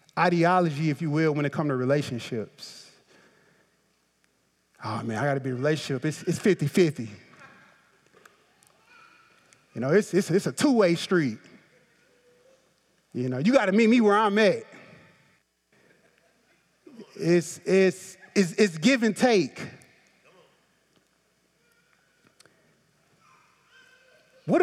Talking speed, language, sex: 115 wpm, English, male